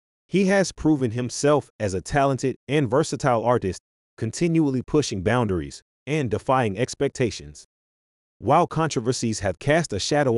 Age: 30-49